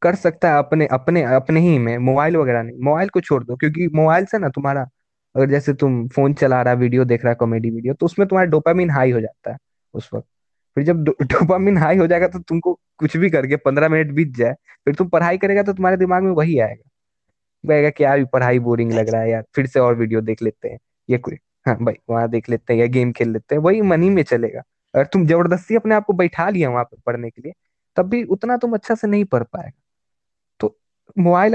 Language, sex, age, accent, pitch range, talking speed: Hindi, male, 20-39, native, 120-170 Hz, 230 wpm